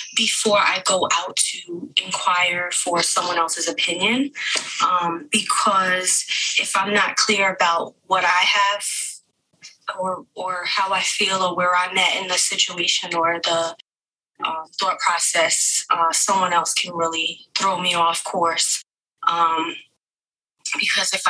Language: English